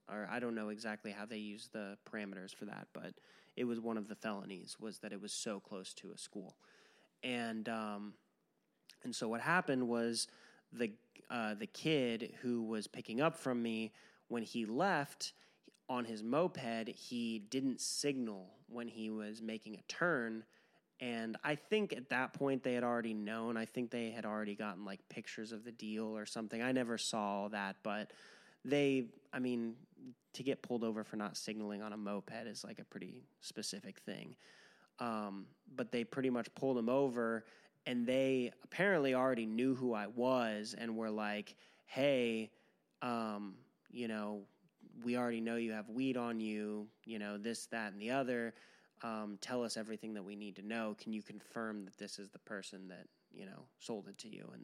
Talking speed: 190 wpm